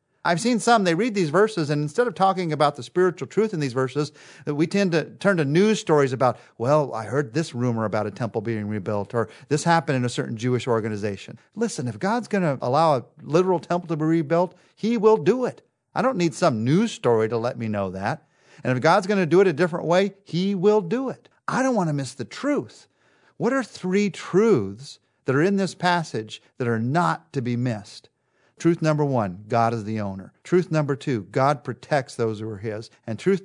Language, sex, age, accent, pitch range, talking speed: English, male, 40-59, American, 120-180 Hz, 225 wpm